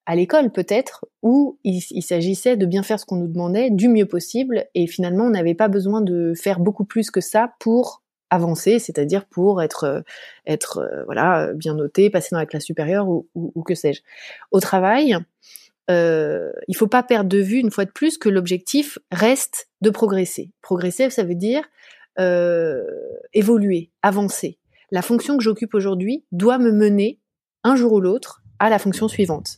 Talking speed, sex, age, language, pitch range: 180 wpm, female, 30-49, French, 180-230 Hz